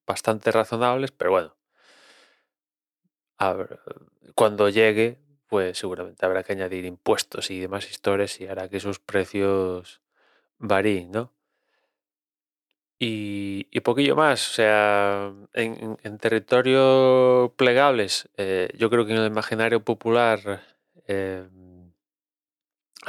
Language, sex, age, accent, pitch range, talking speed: Spanish, male, 20-39, Spanish, 100-120 Hz, 110 wpm